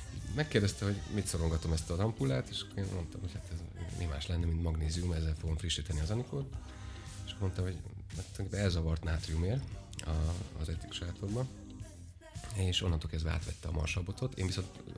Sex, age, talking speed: male, 30-49, 160 wpm